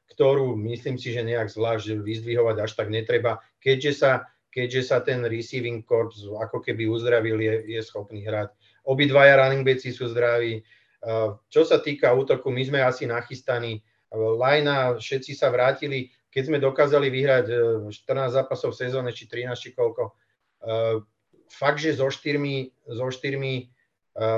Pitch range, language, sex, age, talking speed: 120-135 Hz, Czech, male, 30-49, 145 wpm